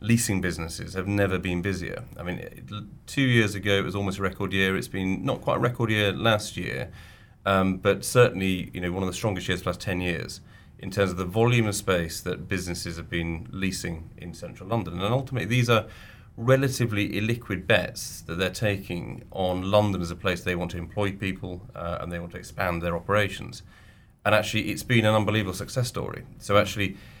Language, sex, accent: English, male, British